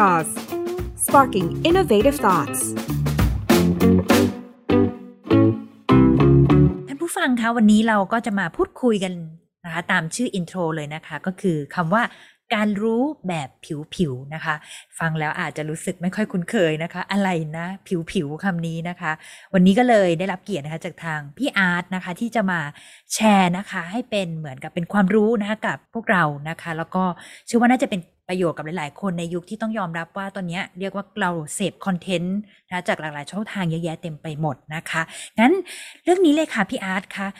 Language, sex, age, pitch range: Thai, female, 20-39, 160-215 Hz